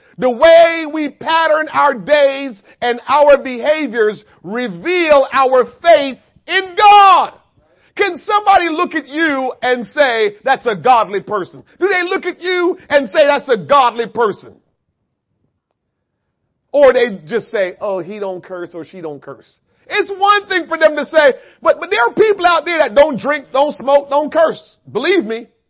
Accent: American